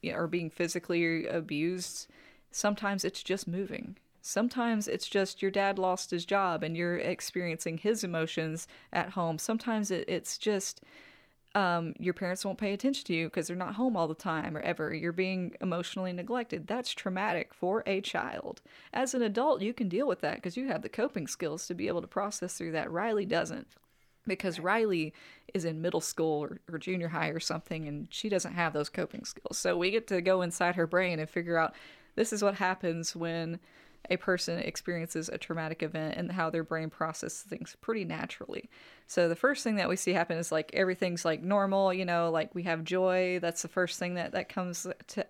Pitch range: 165-195 Hz